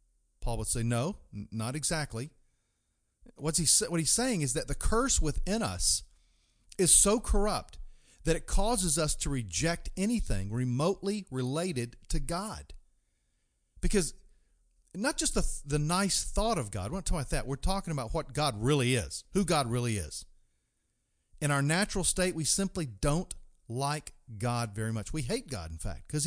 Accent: American